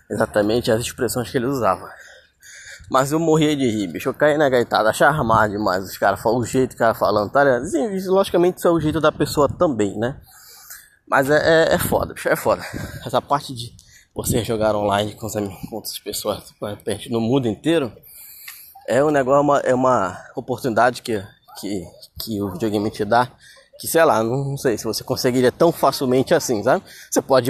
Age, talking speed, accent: 20-39, 200 wpm, Brazilian